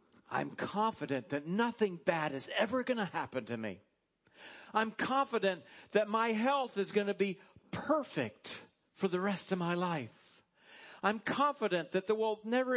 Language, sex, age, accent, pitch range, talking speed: English, male, 50-69, American, 155-215 Hz, 160 wpm